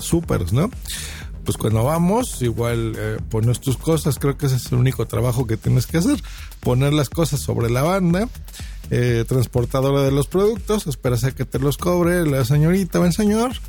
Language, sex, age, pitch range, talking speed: Spanish, male, 50-69, 115-145 Hz, 185 wpm